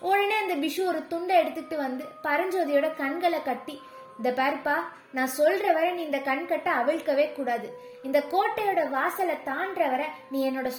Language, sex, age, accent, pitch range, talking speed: Tamil, female, 20-39, native, 270-360 Hz, 85 wpm